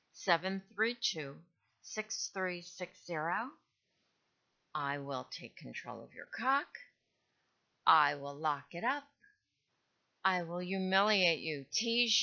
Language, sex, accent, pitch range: English, female, American, 145-195 Hz